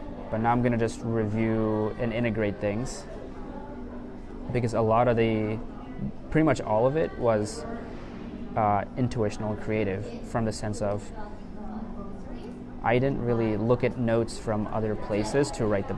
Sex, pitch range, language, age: male, 105-120 Hz, English, 20-39